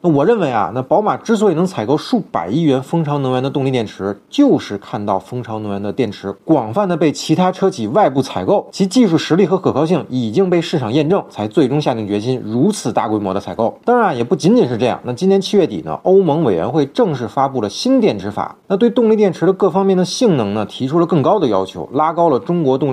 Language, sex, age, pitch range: Chinese, male, 30-49, 125-195 Hz